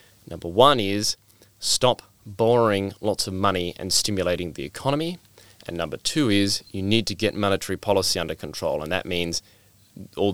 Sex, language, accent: male, English, Australian